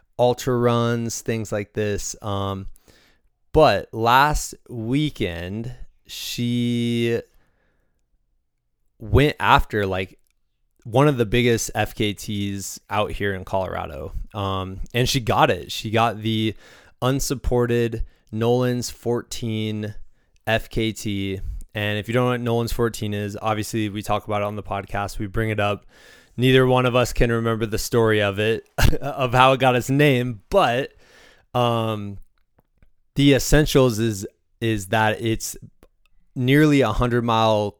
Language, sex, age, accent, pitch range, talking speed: English, male, 20-39, American, 100-120 Hz, 130 wpm